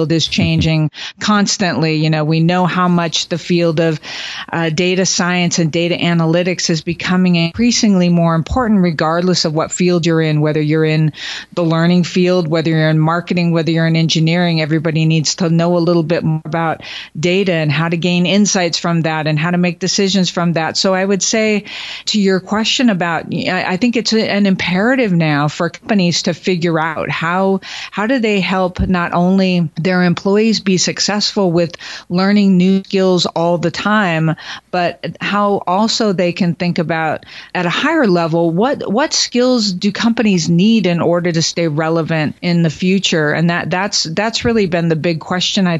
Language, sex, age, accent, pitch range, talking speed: English, female, 40-59, American, 165-190 Hz, 185 wpm